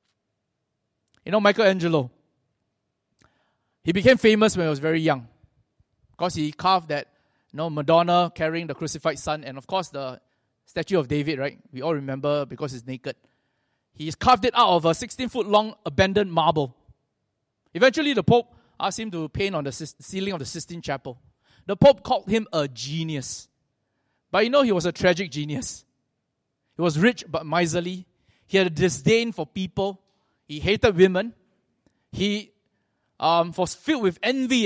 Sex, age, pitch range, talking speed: male, 20-39, 140-200 Hz, 160 wpm